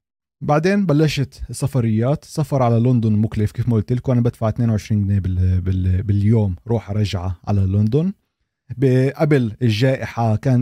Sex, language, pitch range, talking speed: male, Arabic, 105-125 Hz, 140 wpm